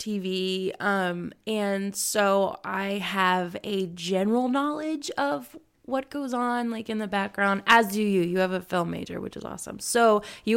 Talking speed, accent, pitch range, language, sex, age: 170 wpm, American, 185-215 Hz, English, female, 20-39